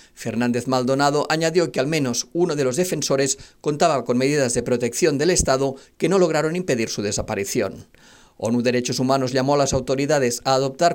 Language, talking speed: Spanish, 175 wpm